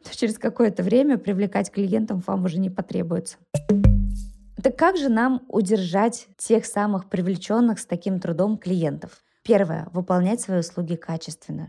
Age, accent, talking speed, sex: 20-39, native, 140 wpm, female